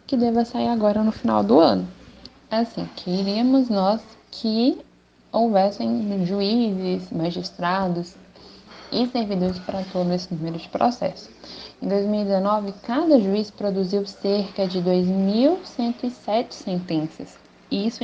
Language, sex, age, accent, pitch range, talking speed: Portuguese, female, 10-29, Brazilian, 185-240 Hz, 110 wpm